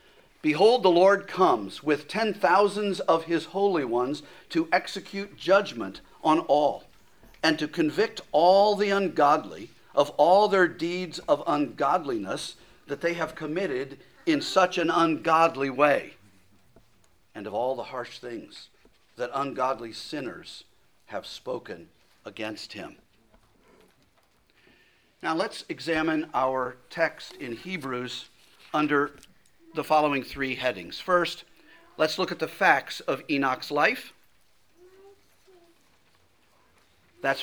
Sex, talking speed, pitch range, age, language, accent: male, 115 wpm, 130-195 Hz, 50-69, English, American